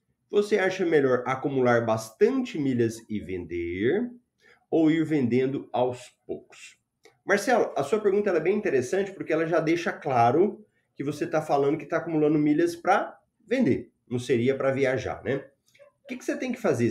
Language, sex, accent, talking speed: Portuguese, male, Brazilian, 170 wpm